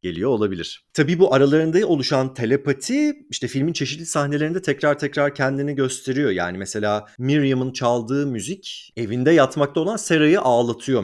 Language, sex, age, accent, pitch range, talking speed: Turkish, male, 40-59, native, 105-150 Hz, 135 wpm